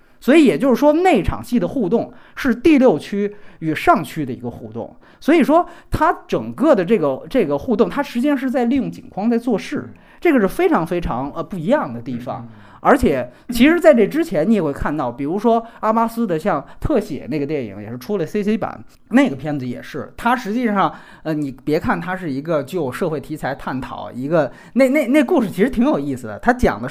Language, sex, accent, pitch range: Chinese, male, native, 165-265 Hz